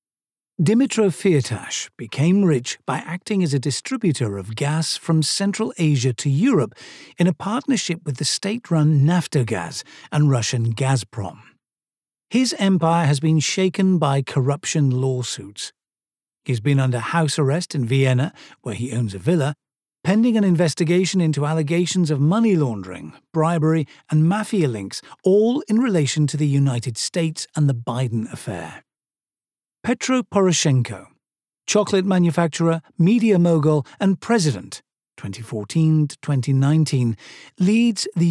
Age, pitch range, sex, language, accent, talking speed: 50-69, 135-180 Hz, male, English, British, 125 wpm